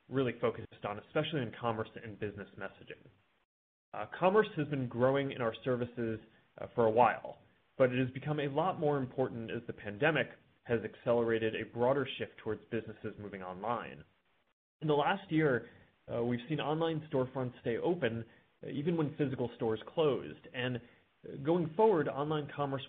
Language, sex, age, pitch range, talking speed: English, male, 30-49, 115-145 Hz, 165 wpm